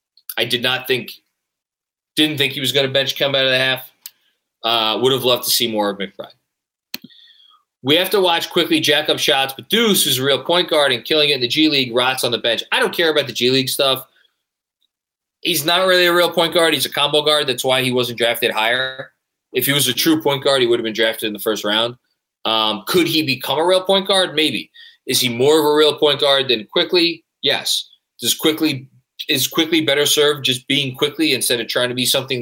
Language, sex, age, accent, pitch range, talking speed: English, male, 20-39, American, 125-165 Hz, 235 wpm